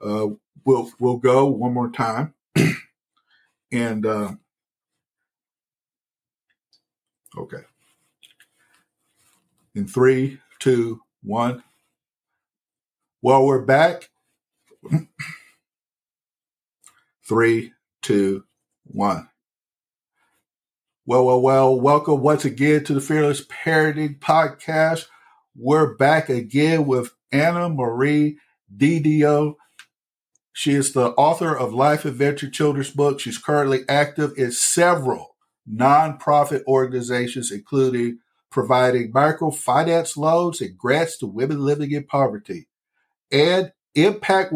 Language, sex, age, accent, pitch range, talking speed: English, male, 50-69, American, 125-150 Hz, 90 wpm